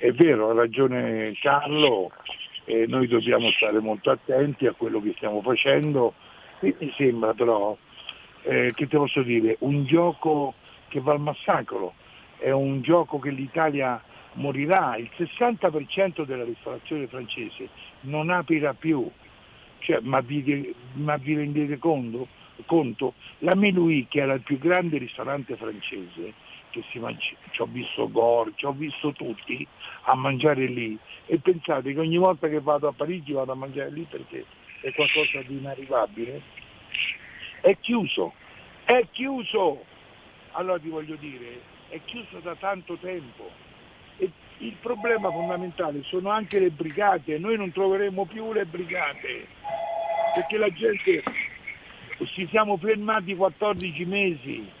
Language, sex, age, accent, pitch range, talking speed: Italian, male, 60-79, native, 135-185 Hz, 140 wpm